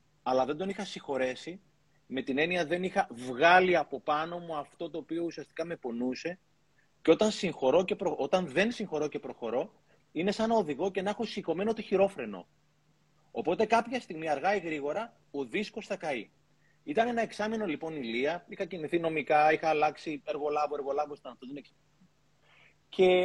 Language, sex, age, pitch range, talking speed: Greek, male, 30-49, 145-200 Hz, 165 wpm